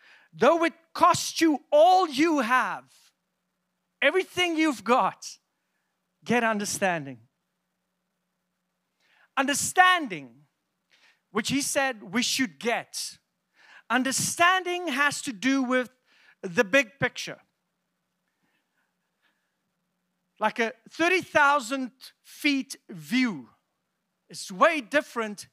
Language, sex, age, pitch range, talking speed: English, male, 50-69, 205-290 Hz, 80 wpm